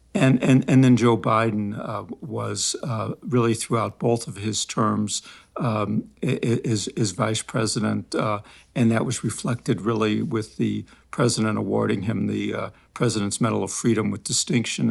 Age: 60-79